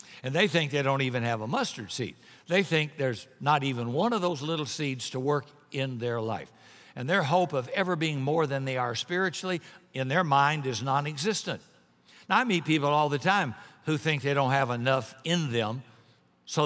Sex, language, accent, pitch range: male, English, American, 125-170 Hz